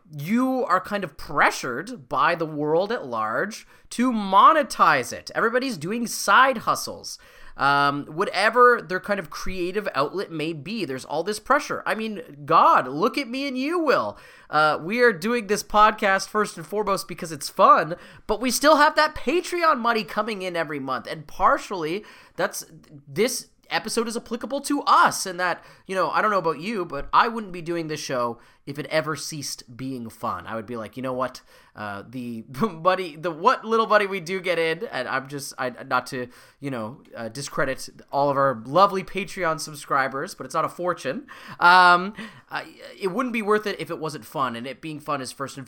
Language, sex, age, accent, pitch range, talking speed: English, male, 30-49, American, 140-225 Hz, 195 wpm